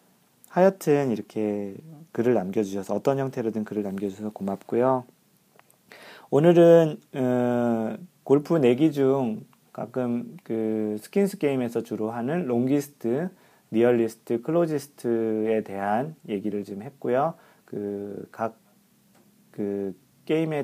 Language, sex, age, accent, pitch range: Korean, male, 40-59, native, 105-145 Hz